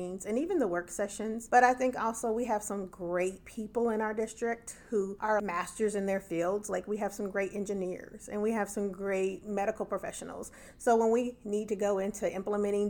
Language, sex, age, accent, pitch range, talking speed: English, female, 30-49, American, 190-225 Hz, 205 wpm